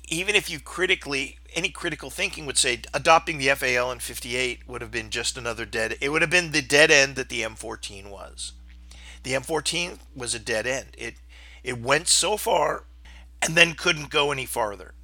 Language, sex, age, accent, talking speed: English, male, 50-69, American, 190 wpm